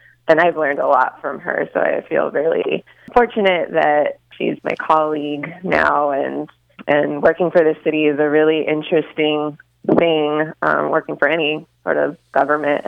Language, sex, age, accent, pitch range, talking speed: English, female, 20-39, American, 145-160 Hz, 165 wpm